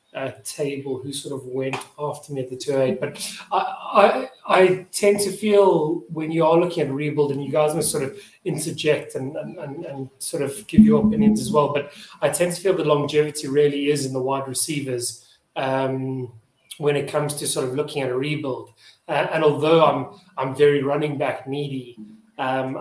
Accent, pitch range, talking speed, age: British, 130-155 Hz, 200 wpm, 30-49